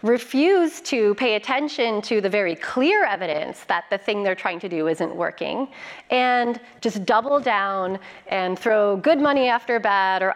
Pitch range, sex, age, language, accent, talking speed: 190-250 Hz, female, 30-49, English, American, 170 wpm